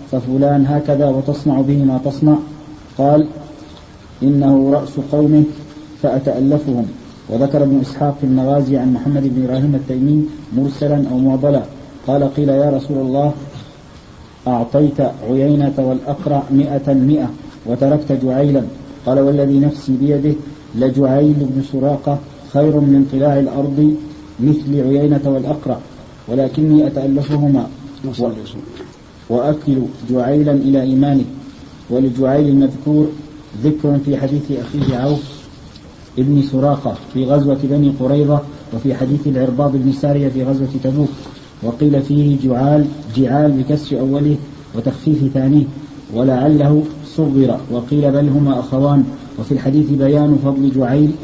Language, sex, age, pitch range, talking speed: Arabic, male, 40-59, 135-145 Hz, 110 wpm